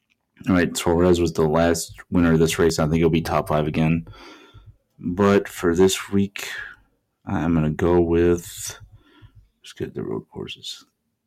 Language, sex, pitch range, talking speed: English, male, 85-105 Hz, 165 wpm